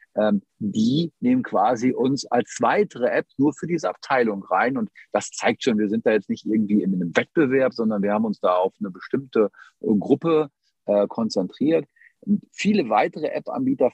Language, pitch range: German, 100-145 Hz